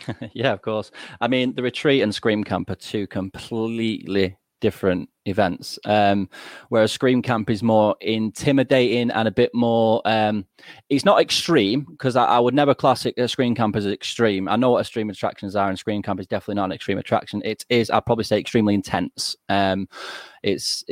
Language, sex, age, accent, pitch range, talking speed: English, male, 20-39, British, 95-115 Hz, 185 wpm